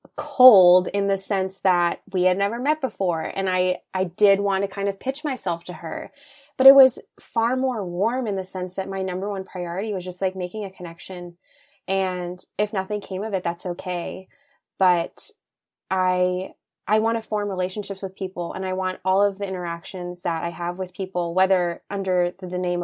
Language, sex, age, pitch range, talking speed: English, female, 20-39, 180-215 Hz, 195 wpm